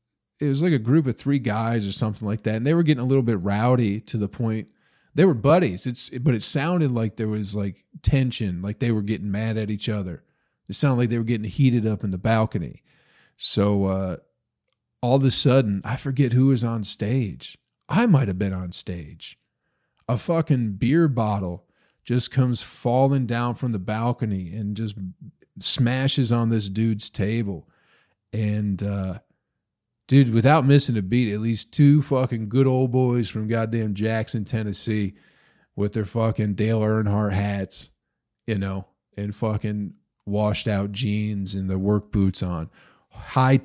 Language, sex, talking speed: English, male, 175 wpm